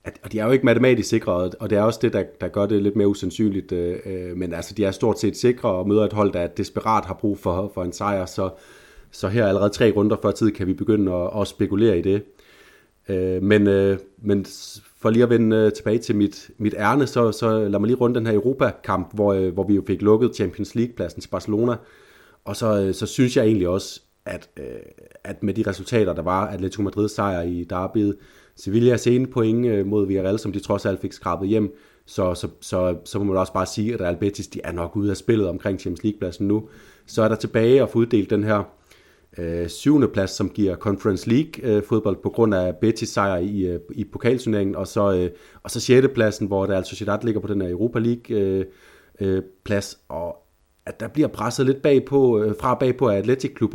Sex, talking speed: male, 220 wpm